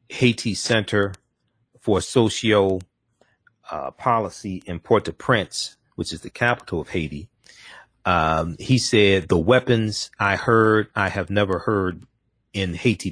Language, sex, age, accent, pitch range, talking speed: English, male, 40-59, American, 95-115 Hz, 120 wpm